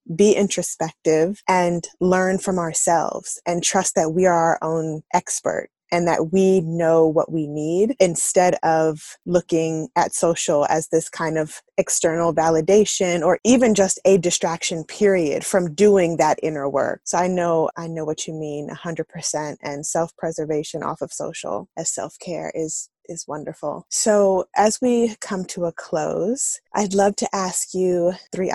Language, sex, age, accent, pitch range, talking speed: English, female, 20-39, American, 160-190 Hz, 165 wpm